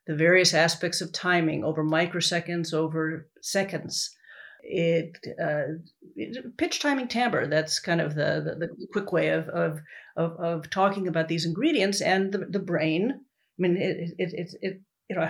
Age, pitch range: 50-69, 165-195 Hz